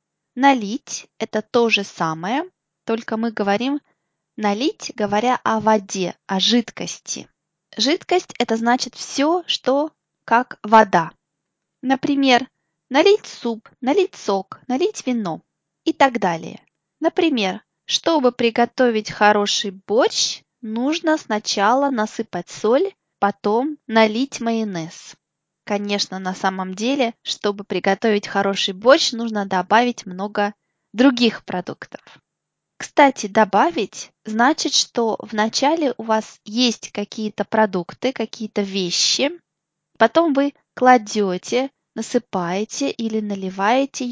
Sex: female